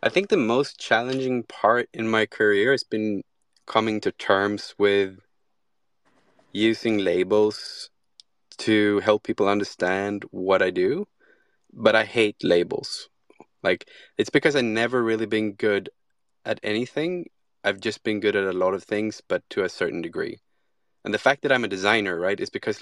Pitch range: 100-115 Hz